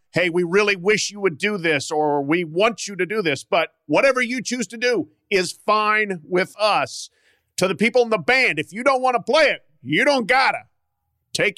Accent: American